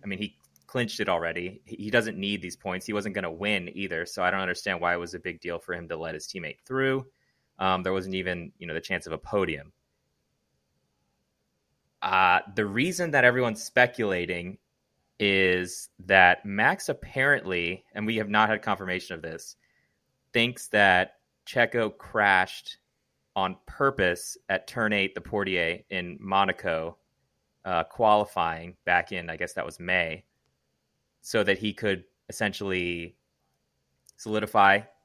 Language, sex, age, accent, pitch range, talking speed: English, male, 30-49, American, 90-110 Hz, 155 wpm